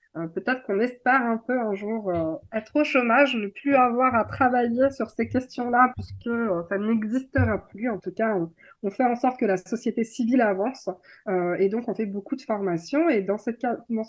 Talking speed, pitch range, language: 215 wpm, 195-260 Hz, French